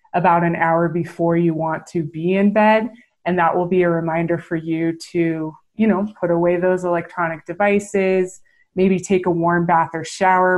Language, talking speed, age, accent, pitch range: English, 185 wpm, 20-39, American, 170-195 Hz